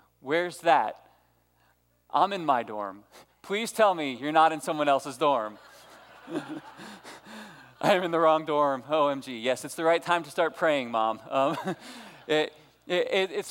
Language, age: English, 20-39